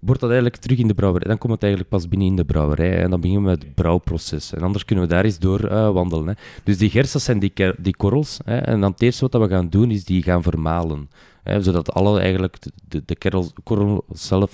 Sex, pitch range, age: male, 85-105 Hz, 20-39